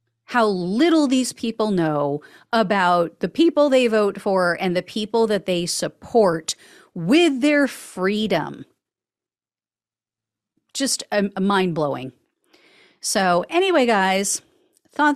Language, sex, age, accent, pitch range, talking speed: English, female, 40-59, American, 170-255 Hz, 110 wpm